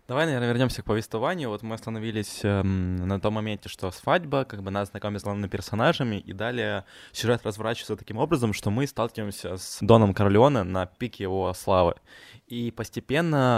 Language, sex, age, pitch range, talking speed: Ukrainian, male, 20-39, 100-115 Hz, 170 wpm